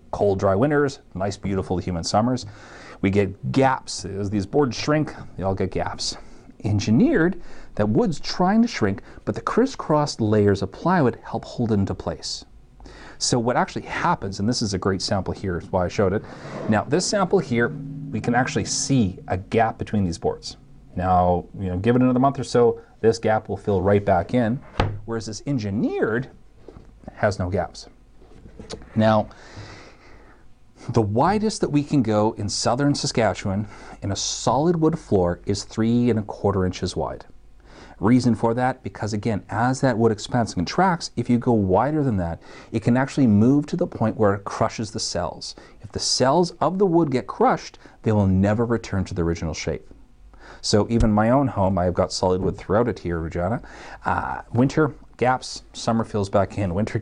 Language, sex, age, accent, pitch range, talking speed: English, male, 40-59, American, 100-125 Hz, 185 wpm